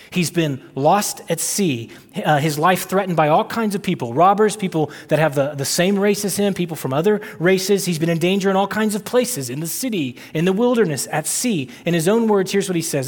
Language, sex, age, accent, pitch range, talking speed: English, male, 30-49, American, 150-210 Hz, 245 wpm